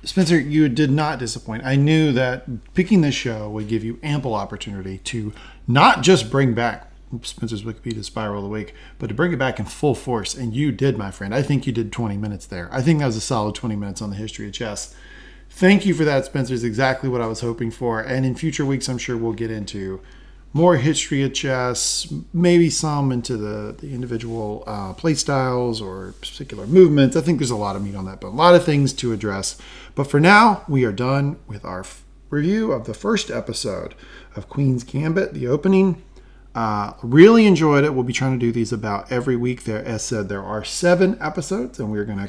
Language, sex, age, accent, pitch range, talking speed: English, male, 40-59, American, 105-140 Hz, 220 wpm